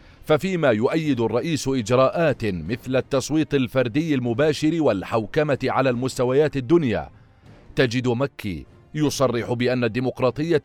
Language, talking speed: Arabic, 95 wpm